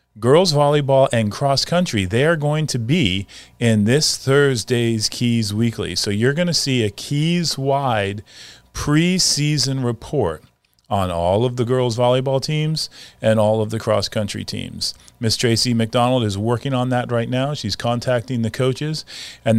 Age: 40-59